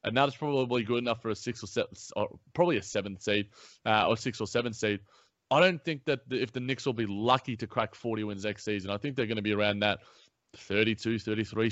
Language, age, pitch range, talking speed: English, 20-39, 105-125 Hz, 250 wpm